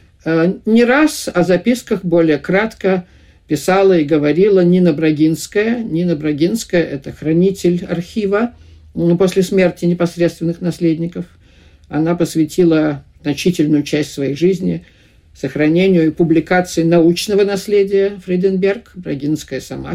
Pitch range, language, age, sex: 145-190 Hz, Russian, 50-69, male